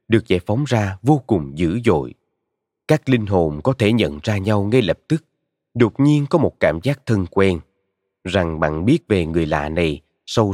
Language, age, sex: Vietnamese, 20-39, male